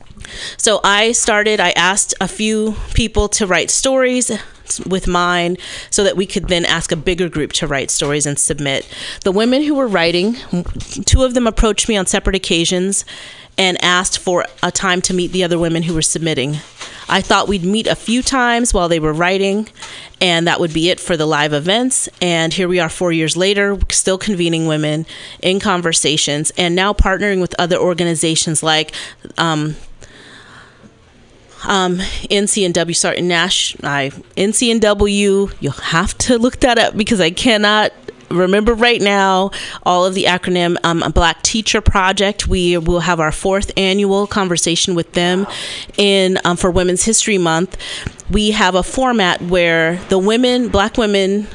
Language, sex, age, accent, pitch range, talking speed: English, female, 30-49, American, 170-200 Hz, 165 wpm